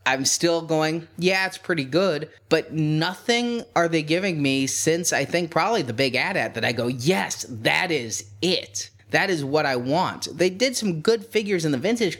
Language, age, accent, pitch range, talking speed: English, 20-39, American, 125-165 Hz, 200 wpm